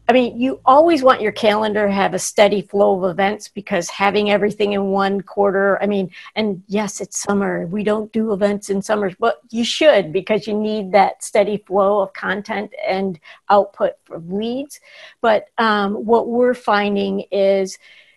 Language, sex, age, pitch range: English, female, 50-69, 200-245 Hz